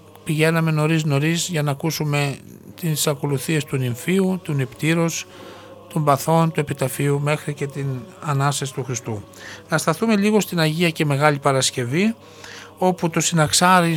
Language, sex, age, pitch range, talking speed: Greek, male, 60-79, 135-170 Hz, 140 wpm